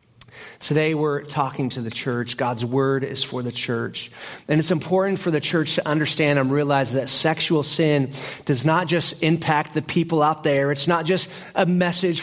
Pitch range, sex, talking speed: 155-190 Hz, male, 185 wpm